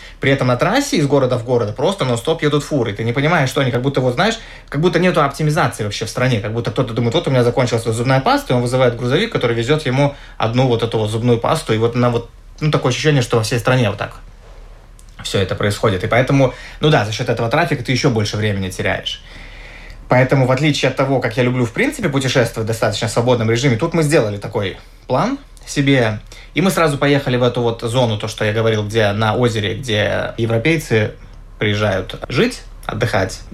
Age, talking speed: 20-39, 220 wpm